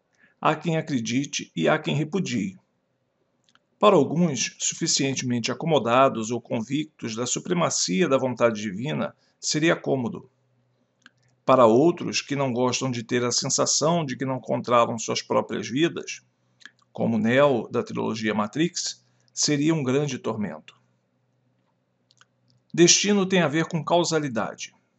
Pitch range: 120-160 Hz